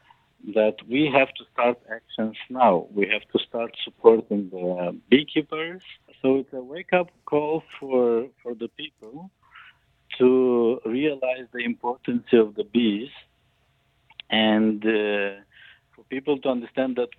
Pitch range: 110-135 Hz